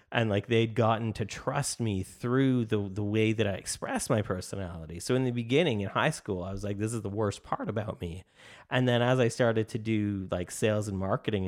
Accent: American